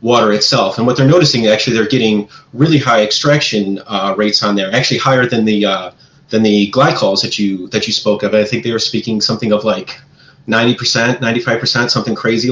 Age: 30-49